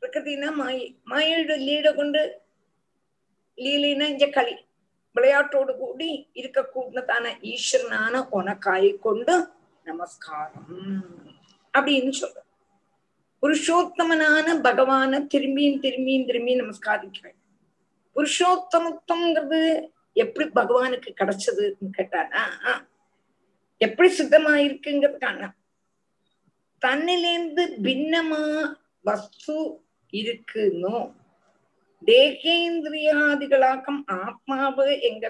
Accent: native